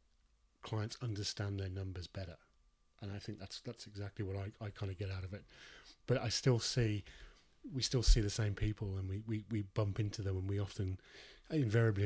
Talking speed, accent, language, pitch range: 205 wpm, British, English, 95-110 Hz